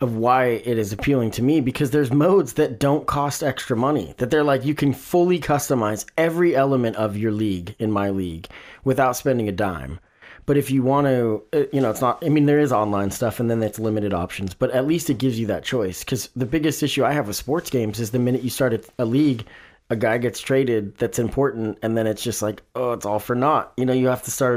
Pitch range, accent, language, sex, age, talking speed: 110-145 Hz, American, English, male, 20-39, 245 wpm